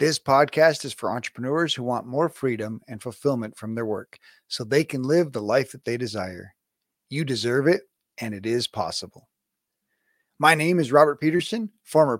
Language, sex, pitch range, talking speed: English, male, 120-165 Hz, 175 wpm